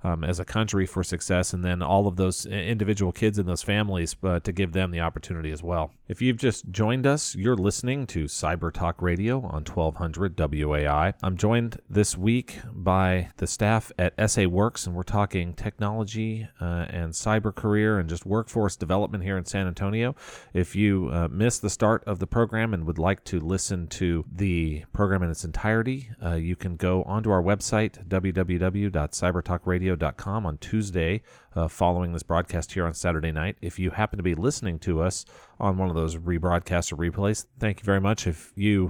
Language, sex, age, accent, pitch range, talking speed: English, male, 30-49, American, 85-105 Hz, 195 wpm